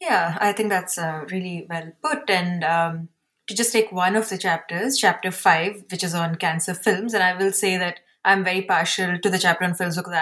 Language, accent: English, Indian